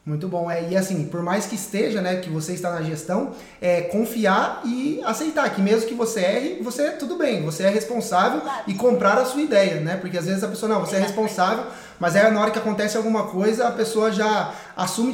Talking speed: 235 wpm